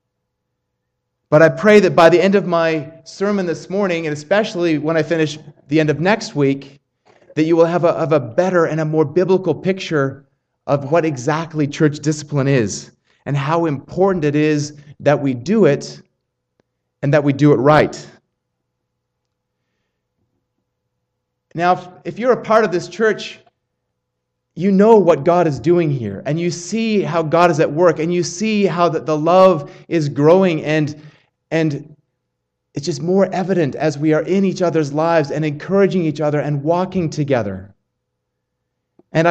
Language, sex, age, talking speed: English, male, 30-49, 165 wpm